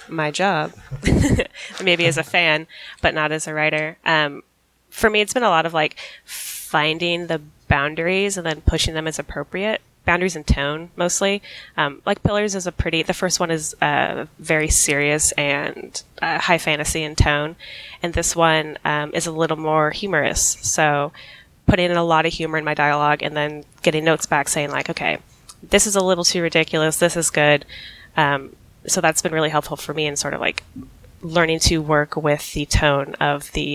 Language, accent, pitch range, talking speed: English, American, 150-175 Hz, 190 wpm